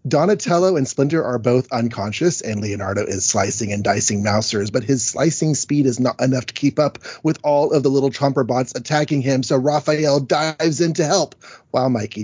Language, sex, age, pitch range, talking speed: English, male, 30-49, 115-150 Hz, 195 wpm